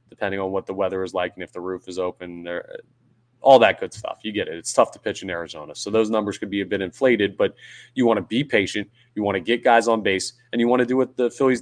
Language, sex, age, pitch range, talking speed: English, male, 20-39, 100-125 Hz, 290 wpm